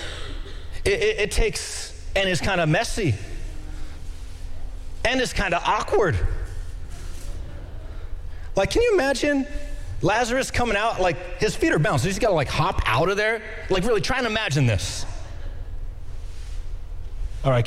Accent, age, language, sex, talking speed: American, 30-49, English, male, 140 wpm